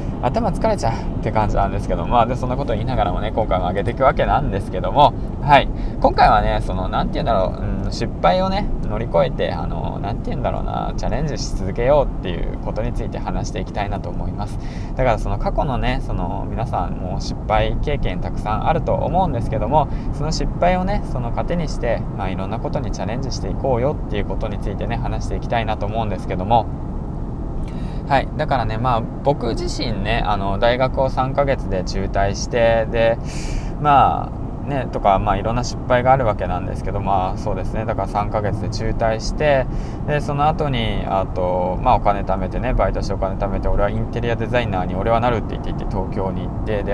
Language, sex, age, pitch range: Japanese, male, 20-39, 100-125 Hz